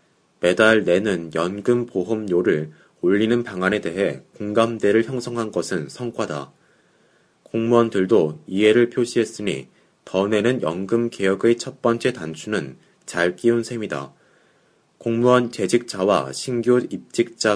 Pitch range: 95-120 Hz